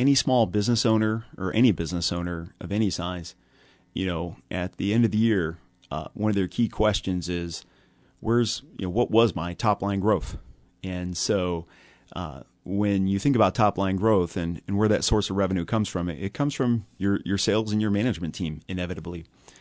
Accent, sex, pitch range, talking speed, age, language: American, male, 90-110 Hz, 195 wpm, 30-49, English